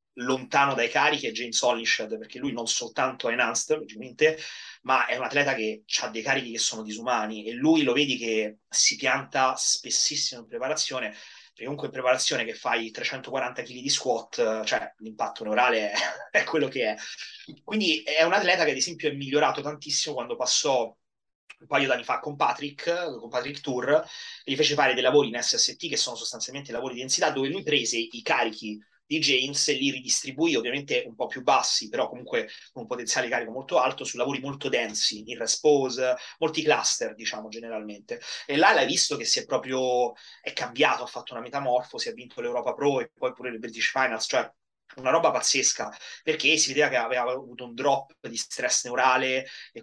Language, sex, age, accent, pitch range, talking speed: Italian, male, 30-49, native, 120-150 Hz, 190 wpm